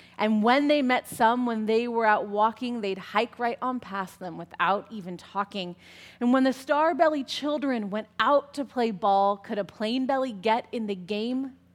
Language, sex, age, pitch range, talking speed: English, female, 20-39, 180-240 Hz, 185 wpm